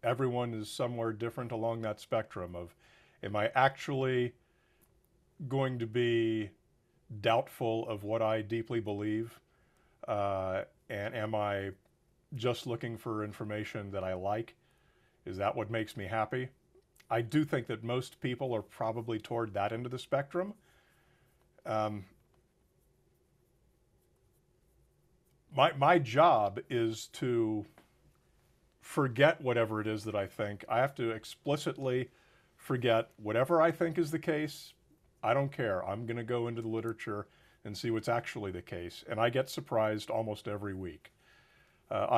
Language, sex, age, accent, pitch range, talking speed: English, male, 50-69, American, 105-130 Hz, 140 wpm